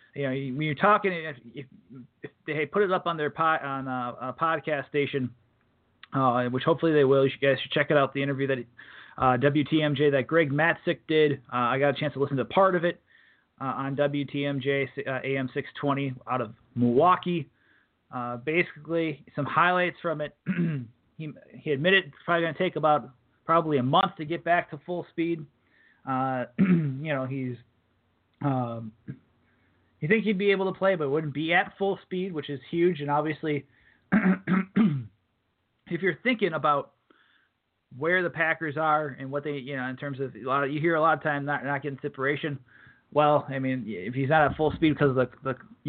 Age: 30-49